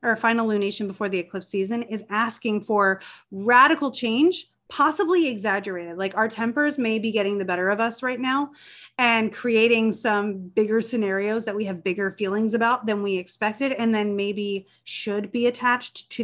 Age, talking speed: 30-49, 175 wpm